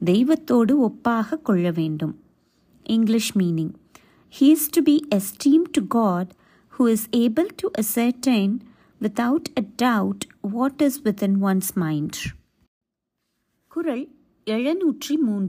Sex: female